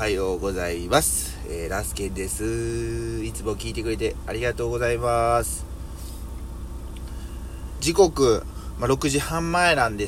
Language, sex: Japanese, male